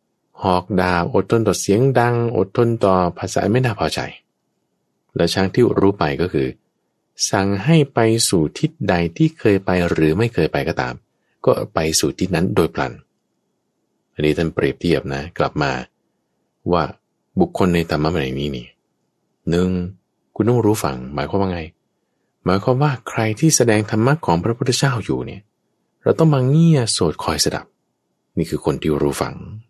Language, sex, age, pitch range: English, male, 20-39, 85-120 Hz